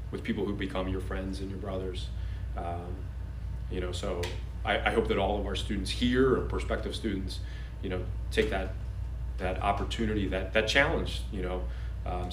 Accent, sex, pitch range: American, male, 95-100 Hz